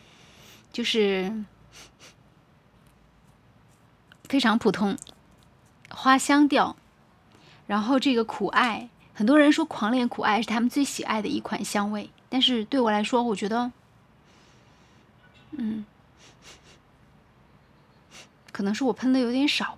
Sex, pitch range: female, 210-270 Hz